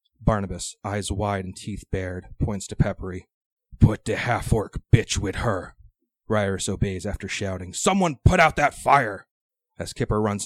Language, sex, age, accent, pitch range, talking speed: English, male, 30-49, American, 90-105 Hz, 155 wpm